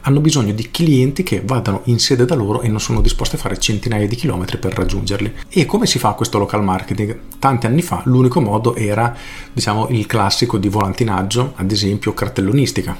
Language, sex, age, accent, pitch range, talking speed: Italian, male, 40-59, native, 100-130 Hz, 195 wpm